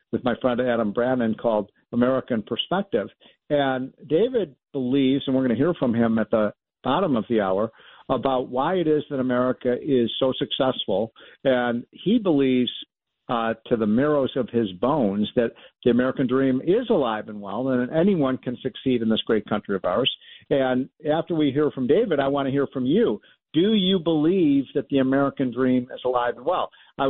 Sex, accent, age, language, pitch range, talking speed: male, American, 50-69, English, 125-150 Hz, 190 wpm